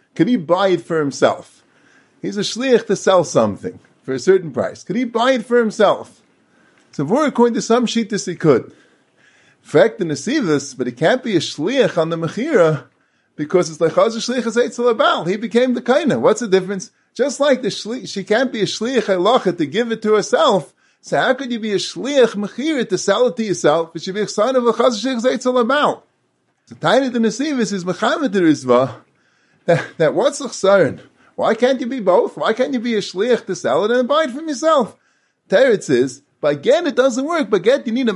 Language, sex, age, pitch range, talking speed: English, male, 30-49, 180-255 Hz, 215 wpm